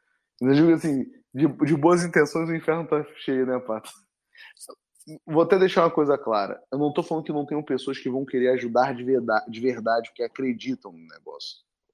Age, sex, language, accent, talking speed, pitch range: 20-39, male, Portuguese, Brazilian, 190 wpm, 125-165 Hz